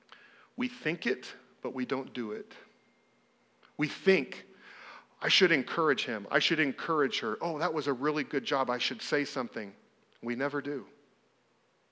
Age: 40-59